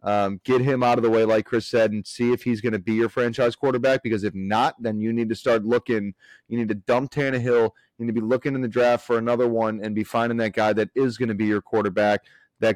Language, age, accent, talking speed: English, 30-49, American, 275 wpm